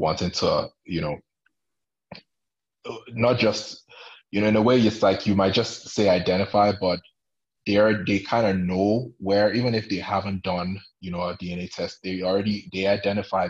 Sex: male